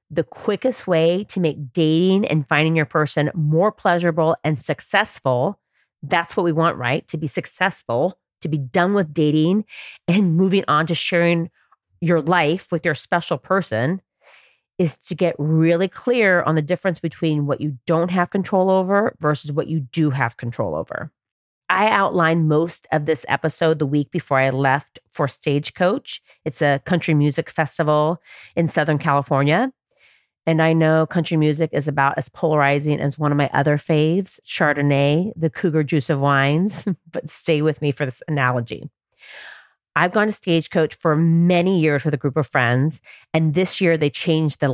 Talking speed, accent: 170 wpm, American